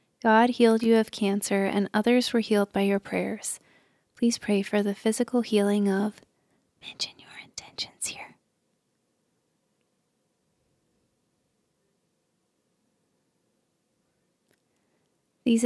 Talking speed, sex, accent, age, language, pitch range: 90 wpm, female, American, 20-39, English, 205-230 Hz